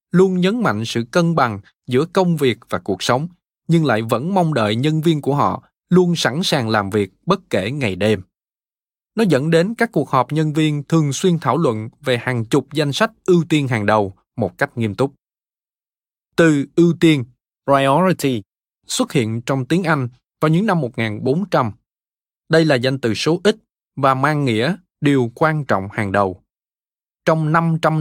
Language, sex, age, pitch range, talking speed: Vietnamese, male, 20-39, 120-170 Hz, 180 wpm